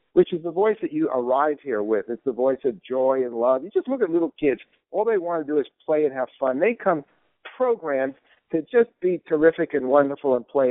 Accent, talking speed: American, 240 wpm